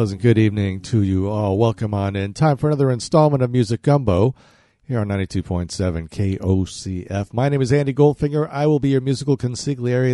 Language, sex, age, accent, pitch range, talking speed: English, male, 50-69, American, 100-135 Hz, 185 wpm